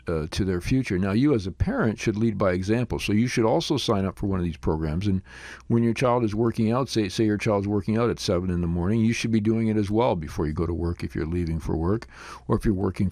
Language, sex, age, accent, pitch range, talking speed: English, male, 50-69, American, 95-115 Hz, 290 wpm